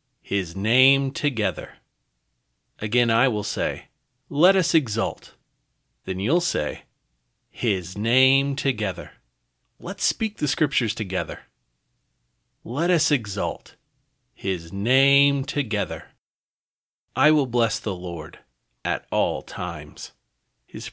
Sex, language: male, English